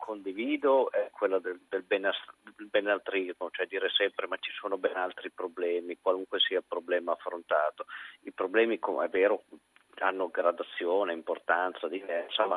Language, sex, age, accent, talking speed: Italian, male, 50-69, native, 145 wpm